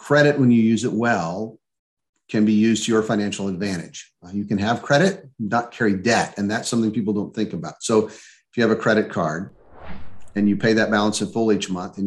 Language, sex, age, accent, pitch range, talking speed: English, male, 50-69, American, 100-125 Hz, 225 wpm